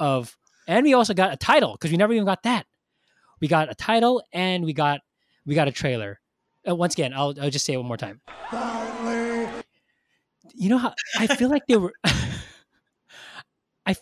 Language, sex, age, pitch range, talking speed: English, male, 20-39, 115-180 Hz, 190 wpm